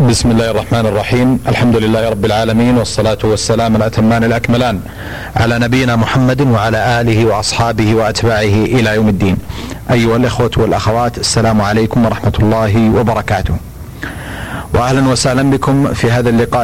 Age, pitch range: 40-59, 105-120 Hz